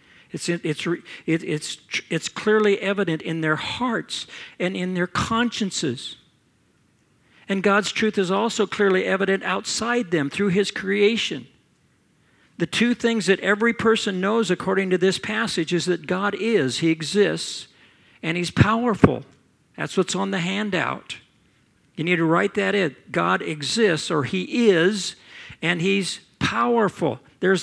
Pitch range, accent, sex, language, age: 170-210 Hz, American, male, Japanese, 50-69